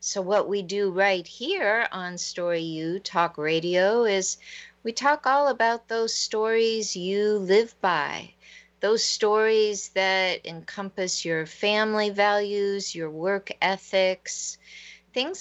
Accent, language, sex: American, English, female